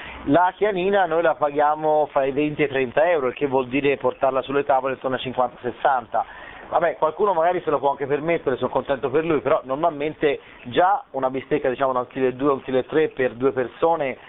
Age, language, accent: 30-49, Italian, native